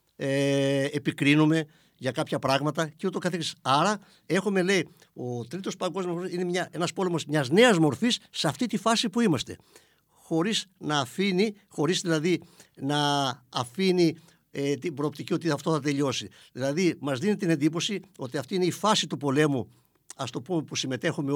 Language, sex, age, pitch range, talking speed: Greek, male, 60-79, 145-195 Hz, 165 wpm